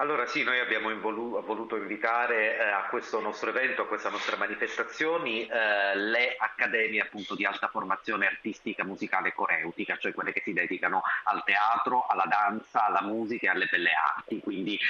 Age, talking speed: 30-49, 175 wpm